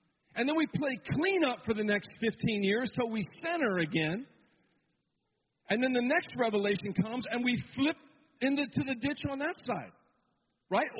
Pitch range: 175-245 Hz